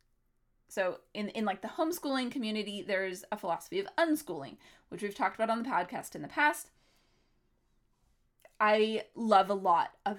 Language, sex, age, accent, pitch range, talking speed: English, female, 20-39, American, 200-260 Hz, 160 wpm